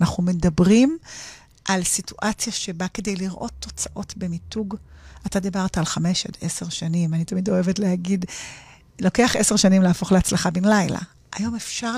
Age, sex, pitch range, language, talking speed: 40-59, female, 180-250 Hz, Hebrew, 145 wpm